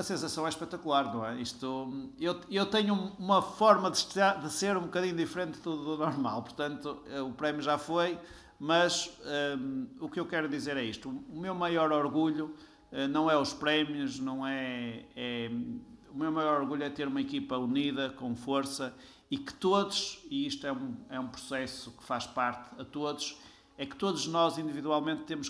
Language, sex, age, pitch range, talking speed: Portuguese, male, 50-69, 130-175 Hz, 185 wpm